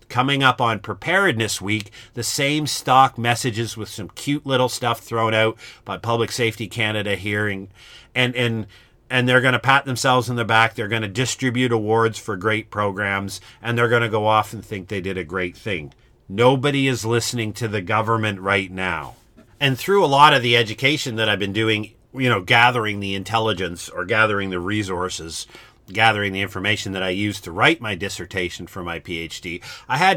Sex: male